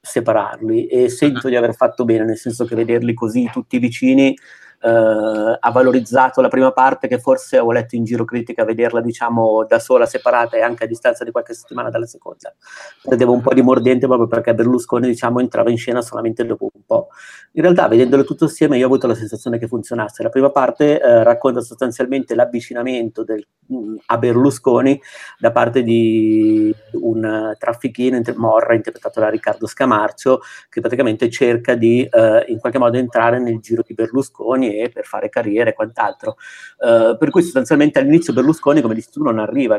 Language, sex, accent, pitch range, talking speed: Italian, male, native, 115-150 Hz, 180 wpm